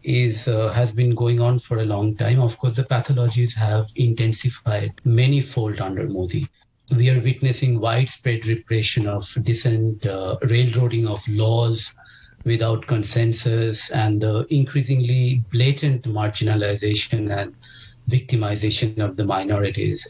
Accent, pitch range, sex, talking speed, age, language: Indian, 110-135 Hz, male, 130 wpm, 50-69, English